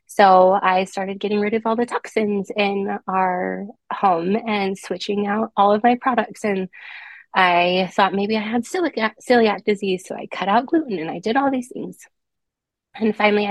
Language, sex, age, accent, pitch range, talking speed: English, female, 20-39, American, 185-215 Hz, 180 wpm